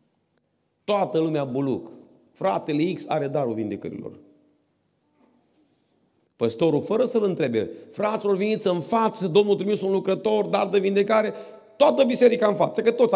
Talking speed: 130 wpm